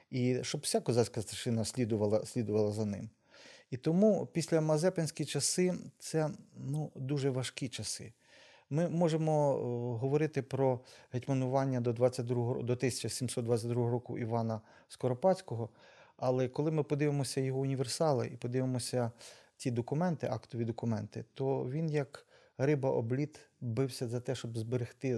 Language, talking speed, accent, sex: Ukrainian, 130 wpm, native, male